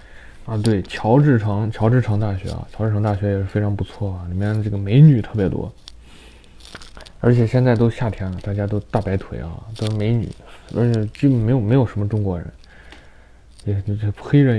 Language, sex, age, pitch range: Chinese, male, 20-39, 90-115 Hz